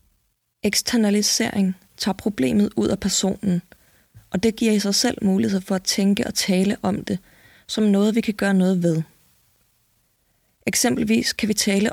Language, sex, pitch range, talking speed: Danish, female, 190-225 Hz, 155 wpm